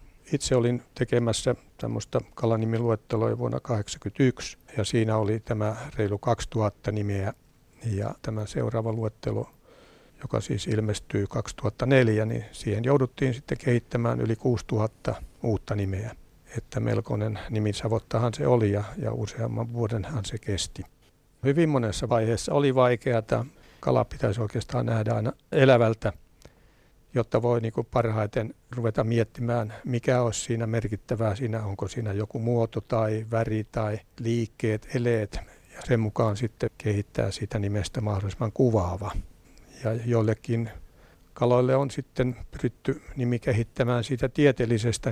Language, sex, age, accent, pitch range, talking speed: Finnish, male, 60-79, native, 105-125 Hz, 125 wpm